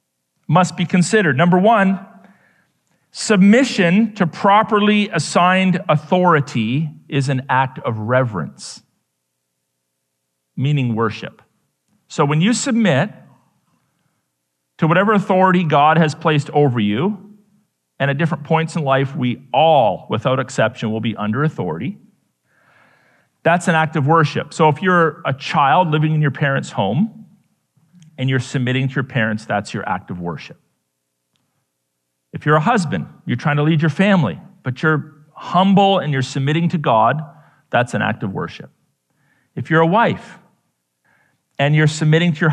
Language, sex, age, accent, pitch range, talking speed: English, male, 40-59, American, 130-185 Hz, 145 wpm